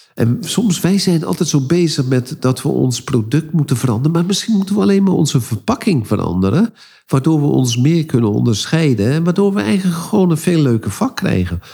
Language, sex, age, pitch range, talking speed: Dutch, male, 50-69, 115-175 Hz, 200 wpm